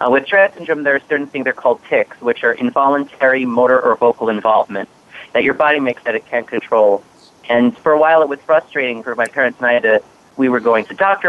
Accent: American